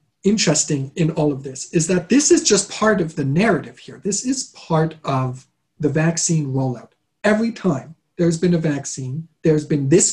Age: 40-59